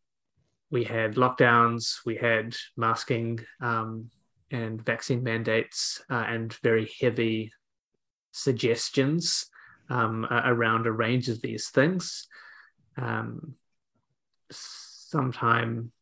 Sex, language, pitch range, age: male, English, 115-130 Hz, 20-39